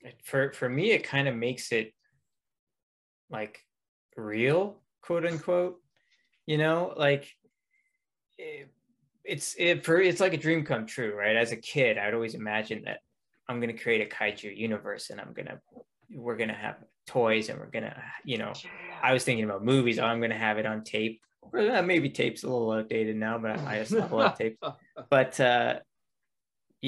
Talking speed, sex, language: 165 wpm, male, English